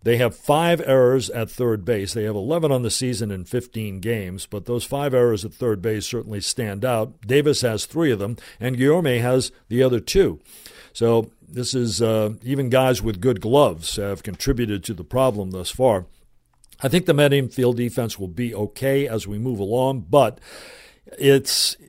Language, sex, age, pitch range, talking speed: English, male, 50-69, 105-130 Hz, 185 wpm